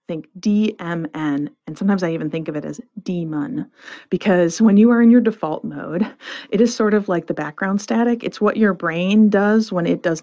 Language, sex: English, female